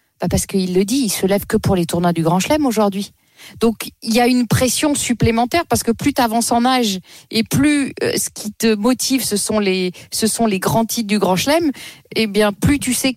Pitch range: 195-245 Hz